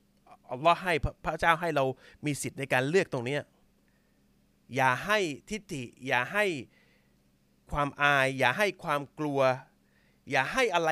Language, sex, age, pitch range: Thai, male, 30-49, 115-170 Hz